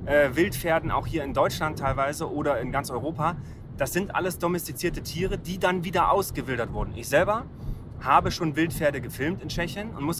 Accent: German